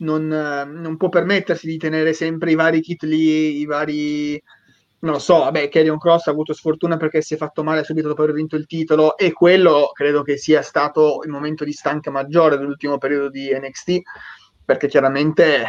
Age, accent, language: 30-49, native, Italian